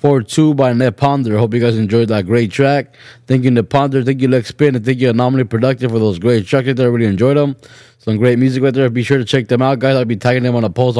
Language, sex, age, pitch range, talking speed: English, male, 20-39, 120-135 Hz, 280 wpm